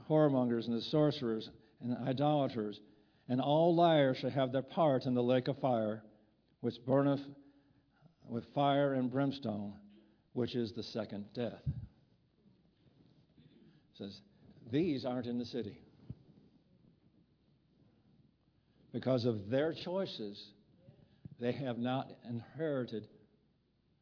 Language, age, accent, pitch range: English, 60-79, American, 115-140 Hz